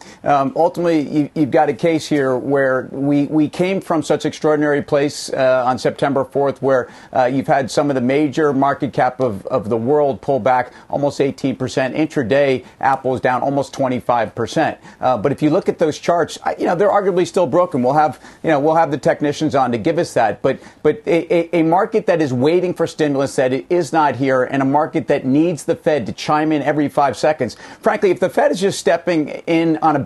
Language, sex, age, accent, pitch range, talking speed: English, male, 40-59, American, 135-160 Hz, 220 wpm